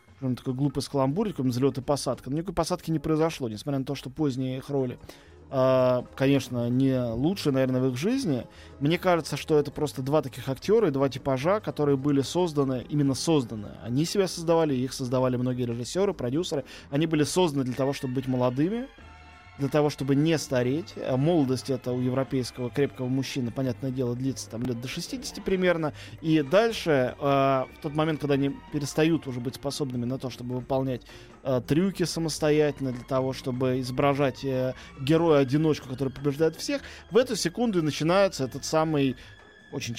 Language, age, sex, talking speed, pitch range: Russian, 20-39, male, 170 wpm, 130-160 Hz